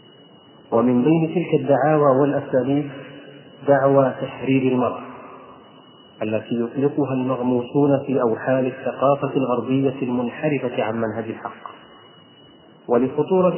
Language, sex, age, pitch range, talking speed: Arabic, male, 40-59, 130-145 Hz, 90 wpm